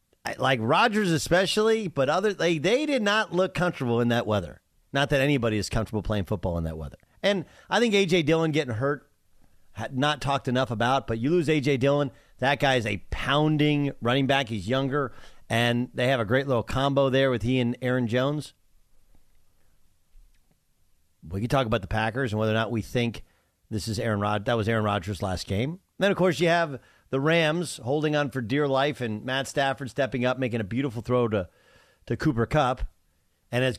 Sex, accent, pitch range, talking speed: male, American, 105-145 Hz, 200 wpm